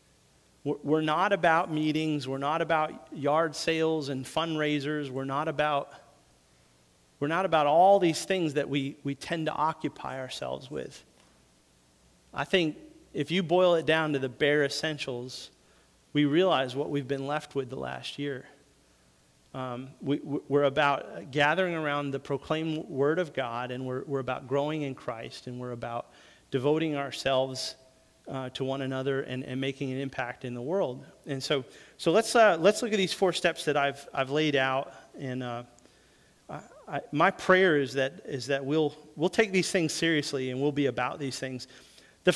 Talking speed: 175 wpm